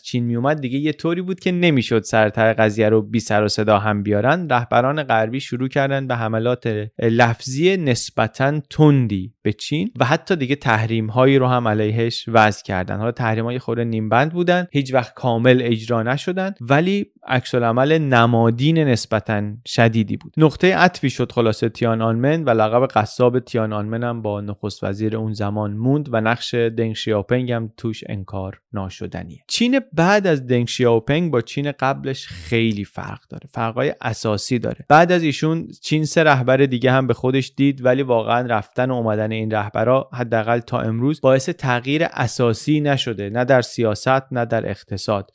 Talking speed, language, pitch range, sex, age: 160 wpm, Persian, 110-135 Hz, male, 30-49